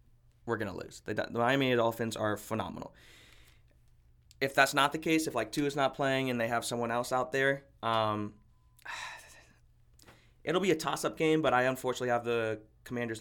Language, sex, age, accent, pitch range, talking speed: English, male, 20-39, American, 110-135 Hz, 175 wpm